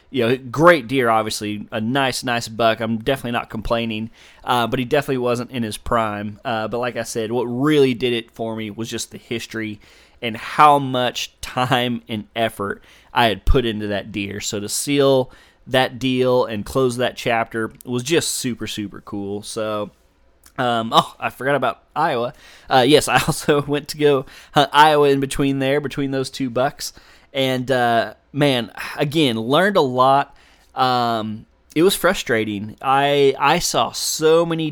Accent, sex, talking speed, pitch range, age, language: American, male, 175 wpm, 115-140 Hz, 20-39, English